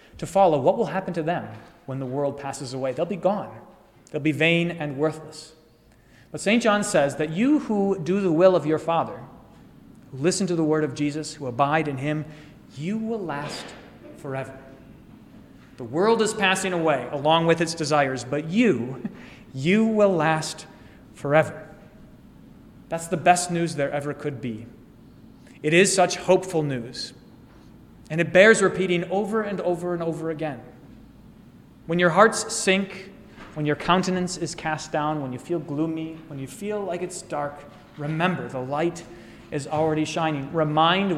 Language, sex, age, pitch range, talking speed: English, male, 30-49, 150-185 Hz, 165 wpm